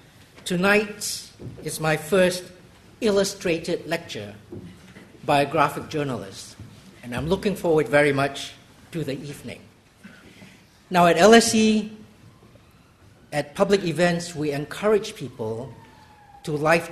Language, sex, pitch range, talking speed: English, male, 130-175 Hz, 105 wpm